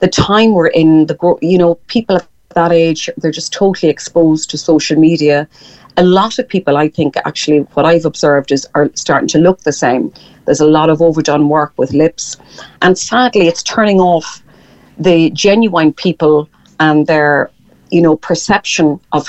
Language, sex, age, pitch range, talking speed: English, female, 40-59, 150-185 Hz, 175 wpm